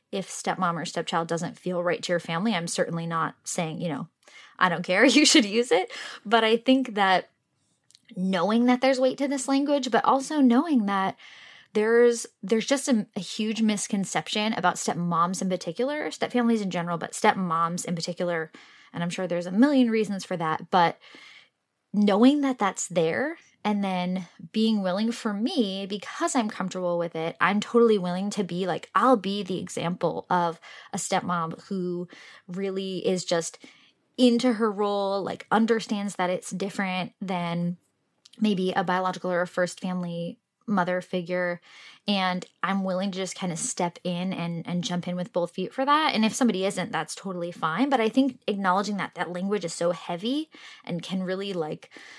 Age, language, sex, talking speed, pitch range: 20-39, English, female, 180 wpm, 175-230 Hz